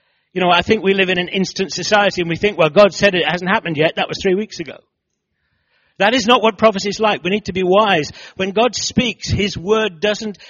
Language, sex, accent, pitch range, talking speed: English, male, British, 150-195 Hz, 250 wpm